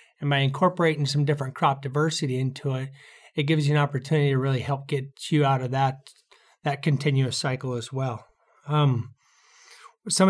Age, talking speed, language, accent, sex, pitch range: 30-49, 170 wpm, English, American, male, 140-155 Hz